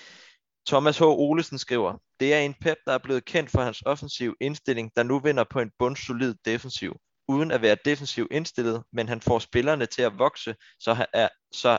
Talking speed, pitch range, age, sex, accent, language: 185 wpm, 115-140 Hz, 20-39, male, native, Danish